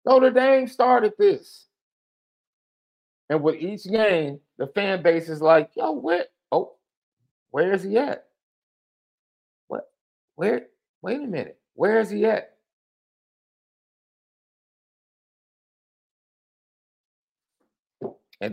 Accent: American